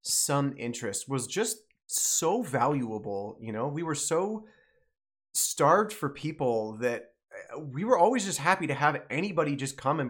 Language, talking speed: English, 155 wpm